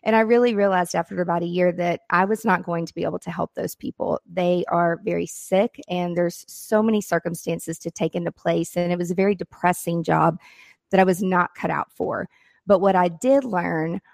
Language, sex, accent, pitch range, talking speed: English, female, American, 175-225 Hz, 220 wpm